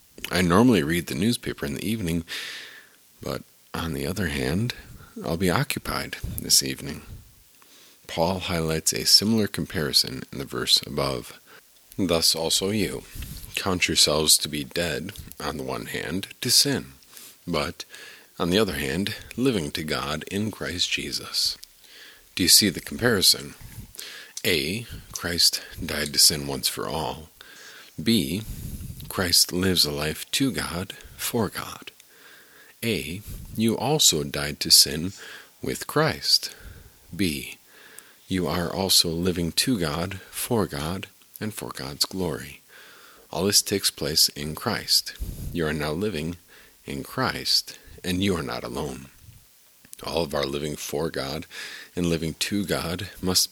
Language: English